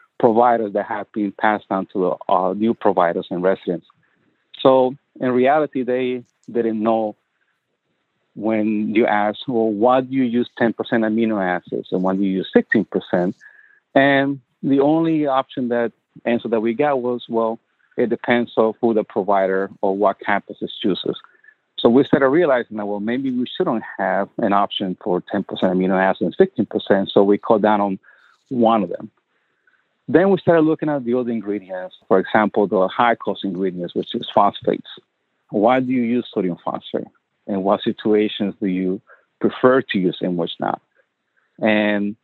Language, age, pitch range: English, 50-69, 100-125 Hz